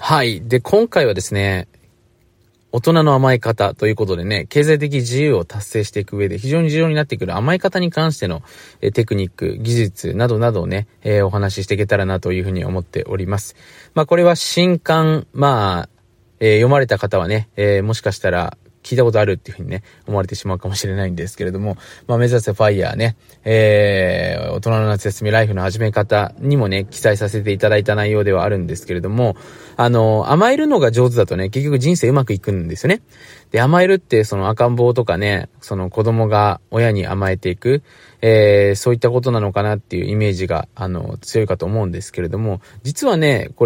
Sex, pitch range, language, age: male, 100-135 Hz, Japanese, 20-39